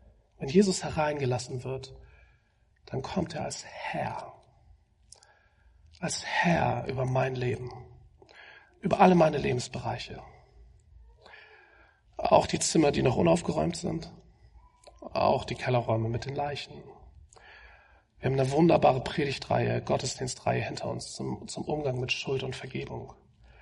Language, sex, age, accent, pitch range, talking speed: German, male, 40-59, German, 110-165 Hz, 115 wpm